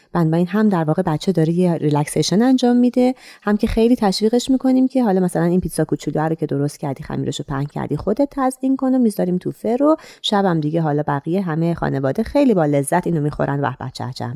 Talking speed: 210 wpm